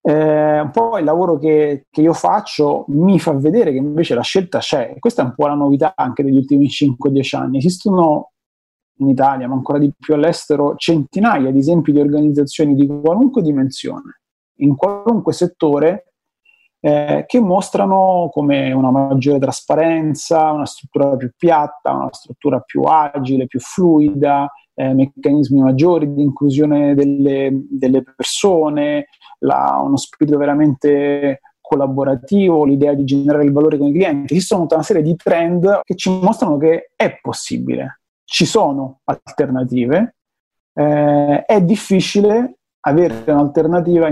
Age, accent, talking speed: 30-49, native, 145 wpm